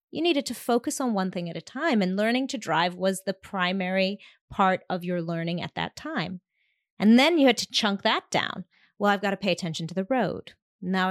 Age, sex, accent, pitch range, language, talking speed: 30-49, female, American, 185-245 Hz, English, 225 wpm